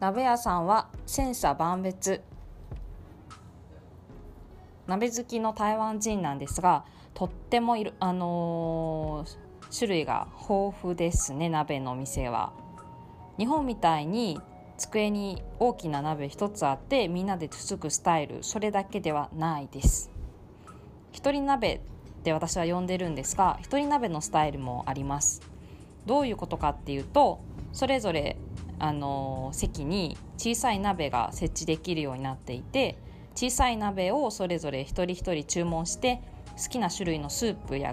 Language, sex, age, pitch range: Japanese, female, 20-39, 140-215 Hz